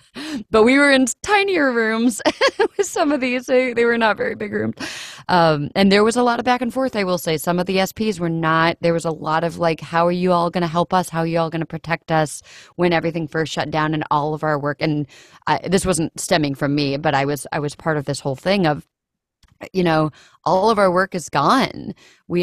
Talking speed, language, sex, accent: 255 wpm, English, female, American